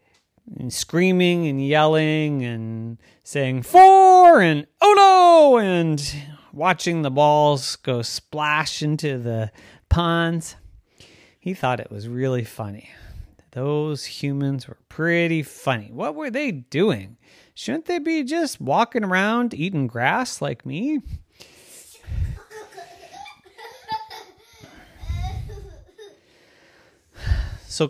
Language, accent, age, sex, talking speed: English, American, 30-49, male, 95 wpm